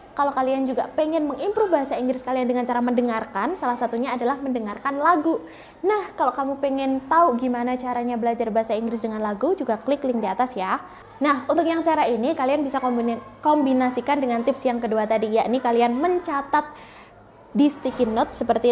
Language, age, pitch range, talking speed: Indonesian, 20-39, 245-325 Hz, 175 wpm